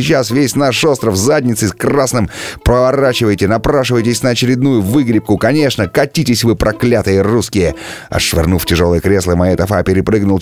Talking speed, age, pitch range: 135 wpm, 30-49, 85-115 Hz